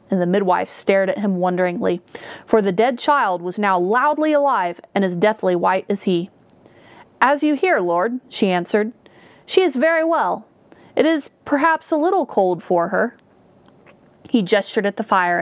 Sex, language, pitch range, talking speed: female, English, 185-245 Hz, 170 wpm